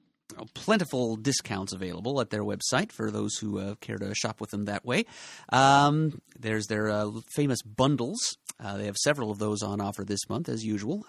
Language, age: English, 30-49